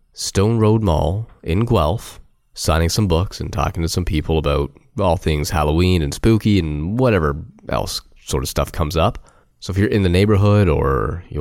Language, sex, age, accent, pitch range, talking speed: English, male, 20-39, American, 80-105 Hz, 185 wpm